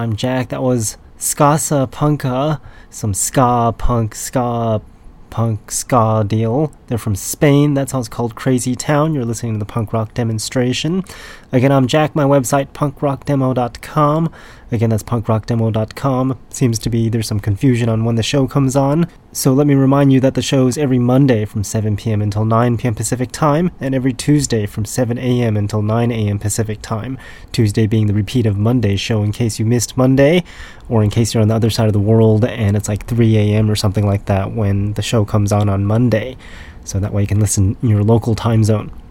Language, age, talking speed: English, 20-39, 200 wpm